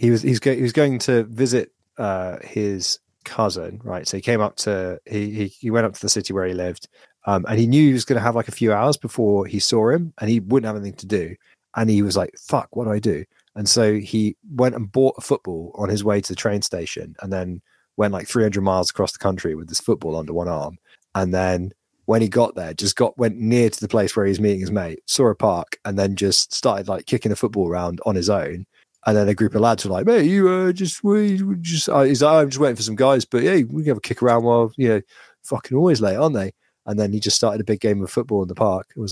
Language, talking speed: English, 280 wpm